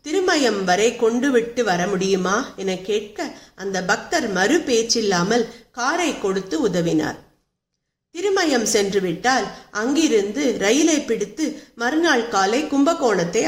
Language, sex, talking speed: Tamil, female, 105 wpm